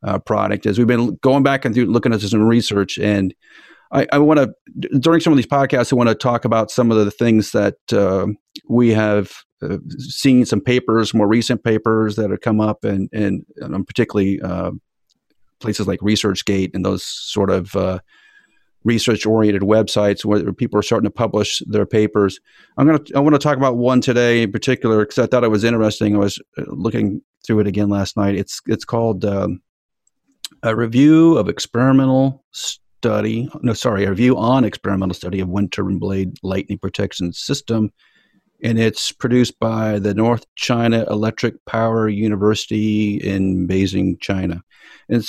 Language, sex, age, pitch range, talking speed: English, male, 40-59, 100-125 Hz, 175 wpm